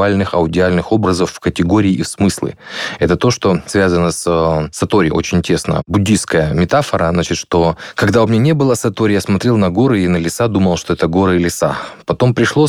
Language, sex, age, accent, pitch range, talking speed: Russian, male, 20-39, native, 85-105 Hz, 195 wpm